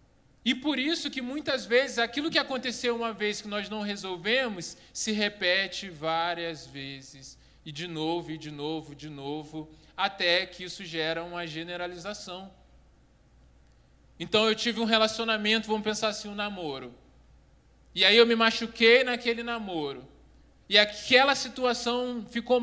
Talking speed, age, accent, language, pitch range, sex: 145 wpm, 20-39, Brazilian, Portuguese, 155-235 Hz, male